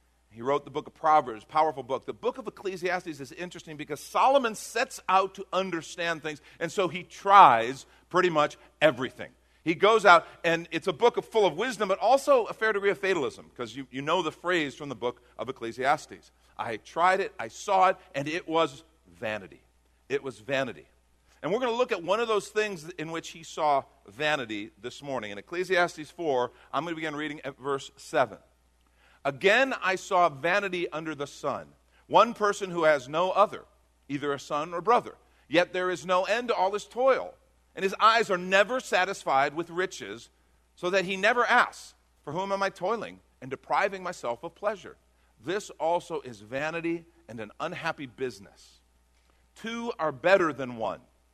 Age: 50-69